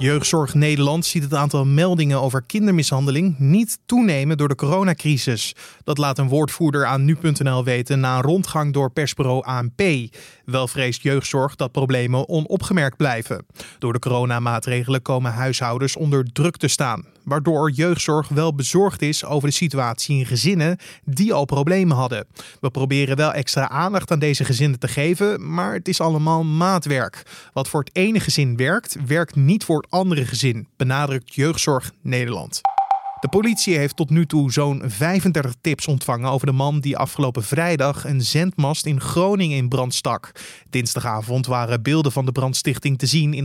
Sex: male